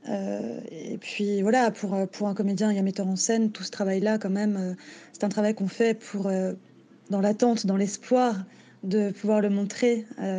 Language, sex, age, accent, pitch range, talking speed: French, female, 20-39, French, 200-230 Hz, 210 wpm